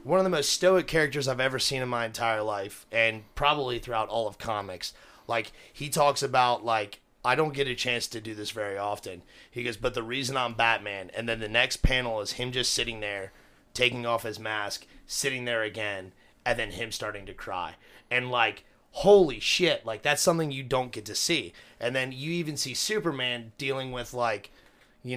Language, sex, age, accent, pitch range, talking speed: English, male, 30-49, American, 110-135 Hz, 205 wpm